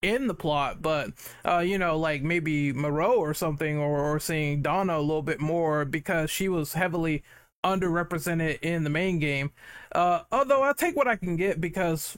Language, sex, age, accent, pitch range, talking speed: English, male, 20-39, American, 150-195 Hz, 185 wpm